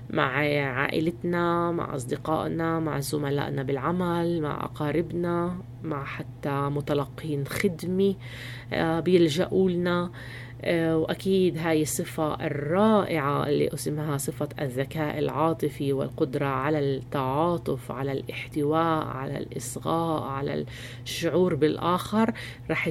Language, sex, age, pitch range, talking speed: English, female, 30-49, 140-175 Hz, 90 wpm